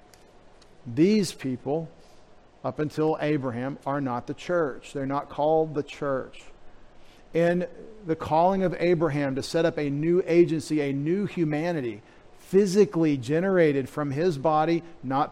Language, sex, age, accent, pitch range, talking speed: English, male, 50-69, American, 140-165 Hz, 135 wpm